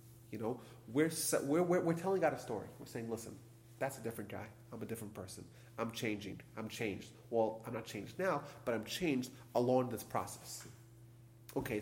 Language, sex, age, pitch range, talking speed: English, male, 30-49, 110-125 Hz, 185 wpm